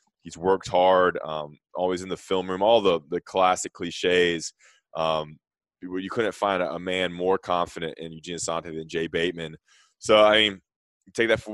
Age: 20-39